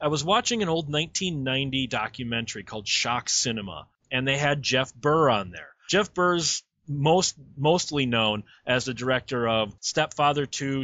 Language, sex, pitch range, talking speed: English, male, 130-185 Hz, 155 wpm